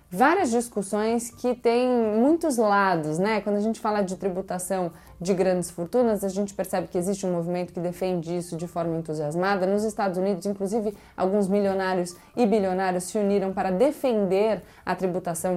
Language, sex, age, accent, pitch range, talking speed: Portuguese, female, 20-39, Brazilian, 180-220 Hz, 165 wpm